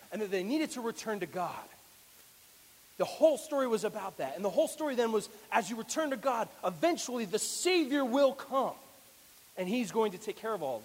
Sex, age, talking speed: male, 30-49, 215 wpm